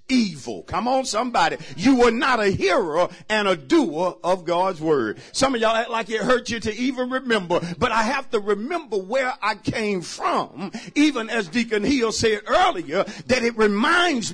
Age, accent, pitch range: 50-69, American, 215-305 Hz